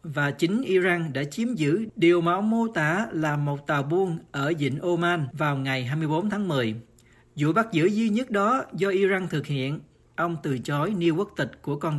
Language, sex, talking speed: Vietnamese, male, 205 wpm